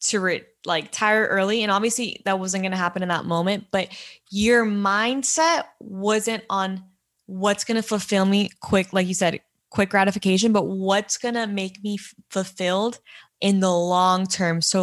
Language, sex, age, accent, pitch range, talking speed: English, female, 20-39, American, 190-215 Hz, 180 wpm